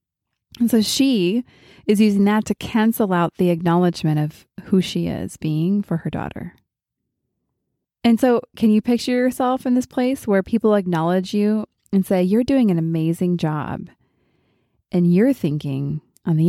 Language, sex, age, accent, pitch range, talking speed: English, female, 20-39, American, 165-215 Hz, 160 wpm